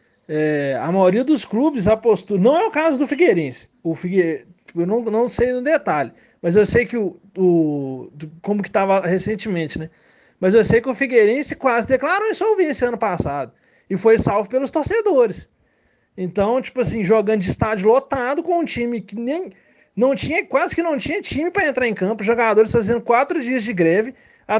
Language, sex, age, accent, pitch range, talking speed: Portuguese, male, 20-39, Brazilian, 195-260 Hz, 190 wpm